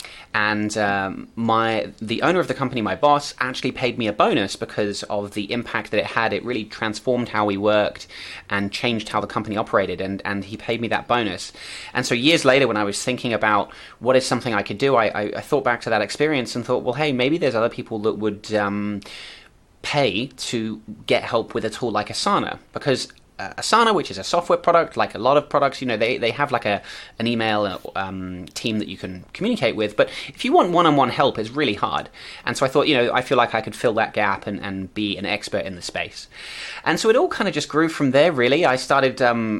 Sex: male